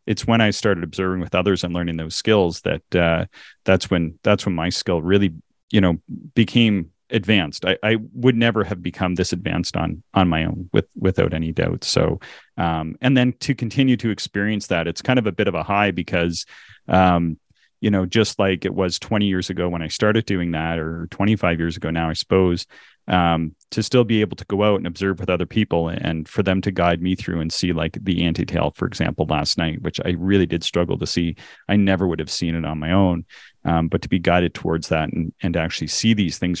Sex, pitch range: male, 85-100 Hz